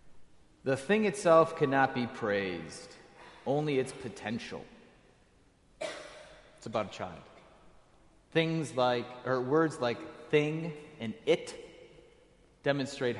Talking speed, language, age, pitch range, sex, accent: 100 wpm, English, 30-49, 110-145 Hz, male, American